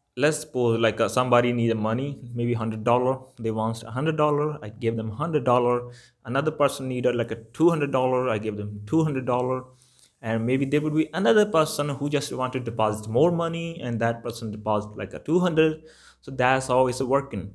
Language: English